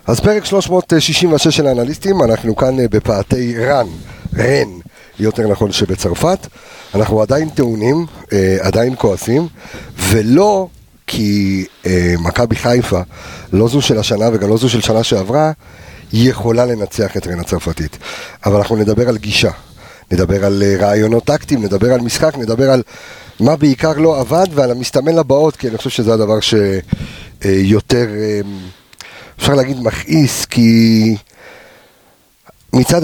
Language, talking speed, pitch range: Hebrew, 125 wpm, 95-125 Hz